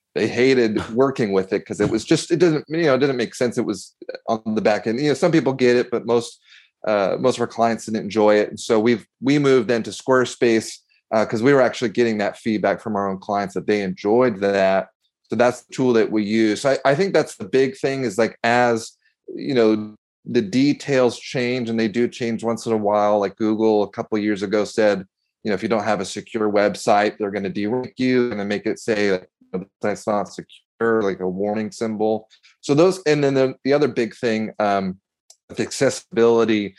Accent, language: American, English